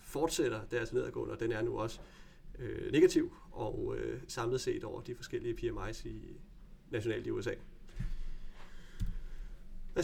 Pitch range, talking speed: 125-190 Hz, 135 wpm